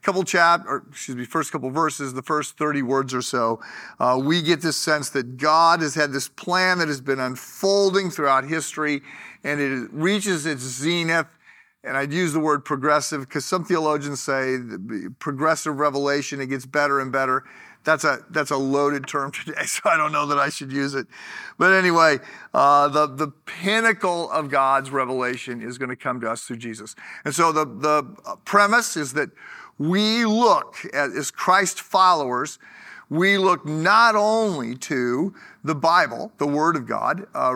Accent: American